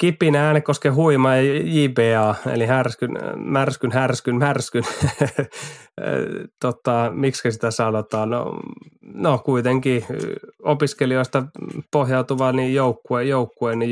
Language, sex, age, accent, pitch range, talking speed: Finnish, male, 20-39, native, 115-130 Hz, 100 wpm